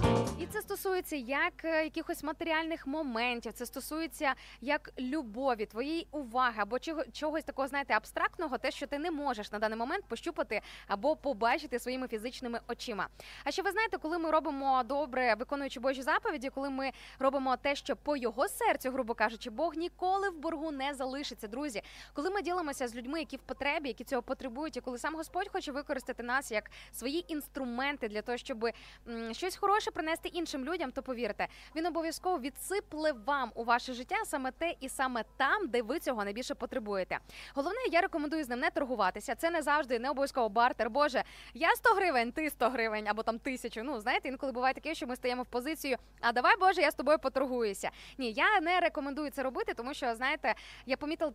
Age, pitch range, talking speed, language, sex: 20-39, 245-315 Hz, 185 wpm, Ukrainian, female